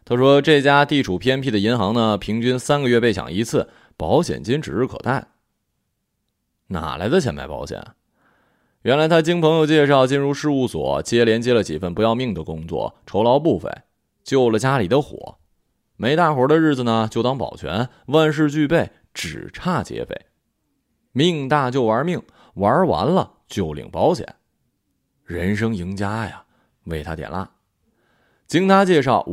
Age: 20-39